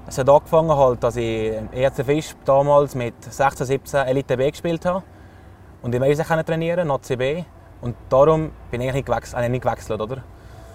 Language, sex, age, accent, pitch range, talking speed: German, male, 20-39, Austrian, 110-150 Hz, 150 wpm